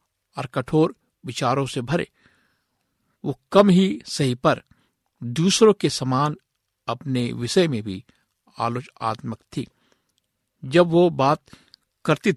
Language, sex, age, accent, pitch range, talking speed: Hindi, male, 60-79, native, 120-165 Hz, 110 wpm